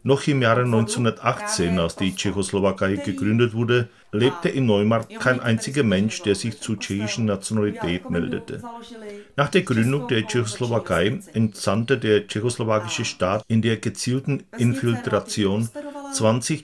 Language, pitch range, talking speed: Czech, 105-130 Hz, 125 wpm